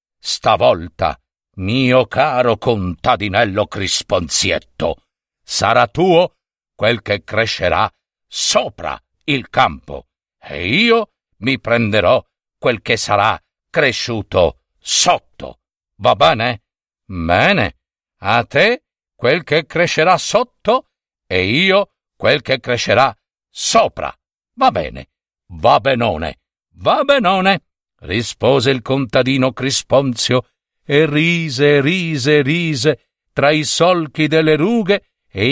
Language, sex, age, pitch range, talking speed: Italian, male, 60-79, 115-180 Hz, 95 wpm